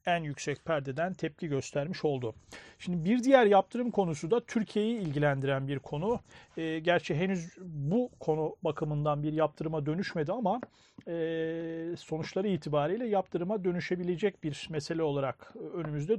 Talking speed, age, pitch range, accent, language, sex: 130 wpm, 40-59, 155-200 Hz, native, Turkish, male